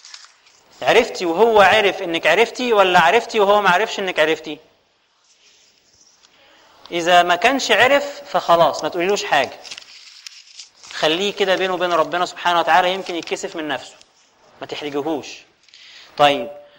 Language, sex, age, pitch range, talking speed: Arabic, male, 30-49, 150-185 Hz, 120 wpm